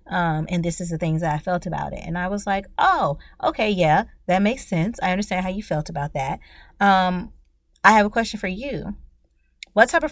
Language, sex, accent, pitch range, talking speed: English, female, American, 160-230 Hz, 225 wpm